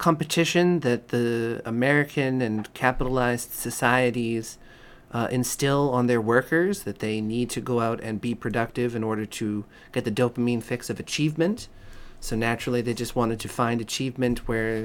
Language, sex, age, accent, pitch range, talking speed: English, male, 30-49, American, 115-140 Hz, 160 wpm